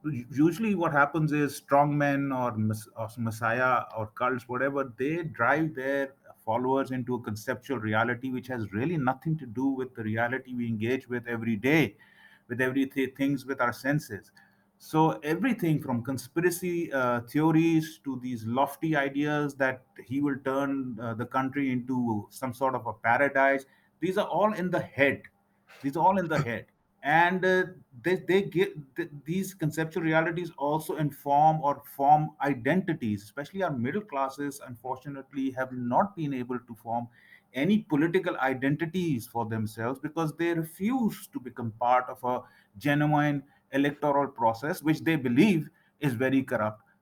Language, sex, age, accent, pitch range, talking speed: English, male, 30-49, Indian, 125-155 Hz, 155 wpm